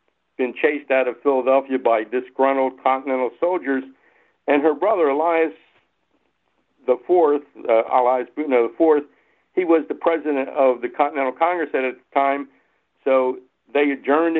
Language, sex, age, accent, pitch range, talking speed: English, male, 60-79, American, 125-145 Hz, 135 wpm